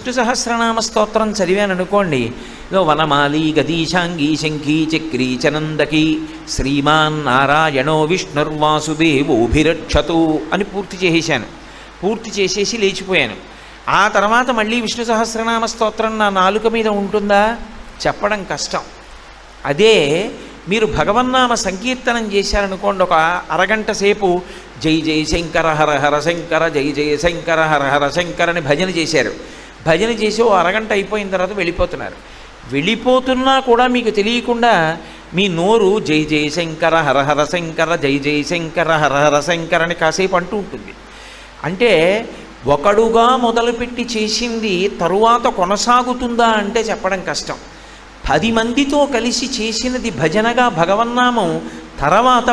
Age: 50-69